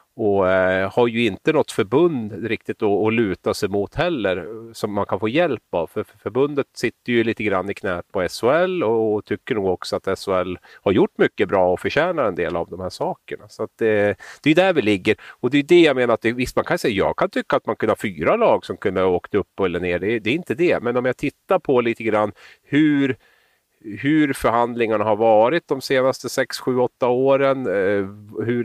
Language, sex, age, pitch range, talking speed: Swedish, male, 30-49, 100-125 Hz, 220 wpm